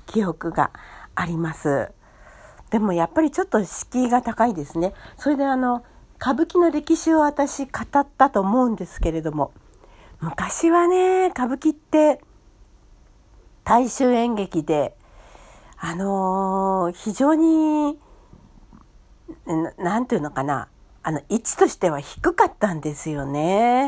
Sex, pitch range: female, 170-275 Hz